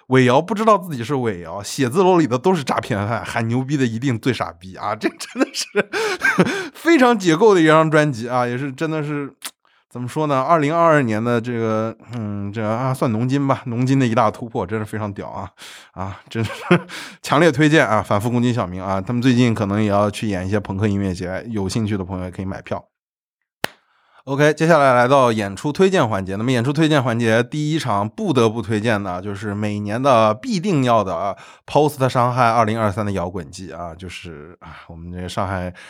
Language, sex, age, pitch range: Chinese, male, 20-39, 100-135 Hz